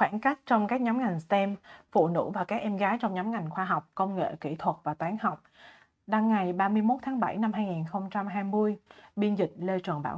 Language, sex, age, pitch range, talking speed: Vietnamese, female, 20-39, 175-220 Hz, 220 wpm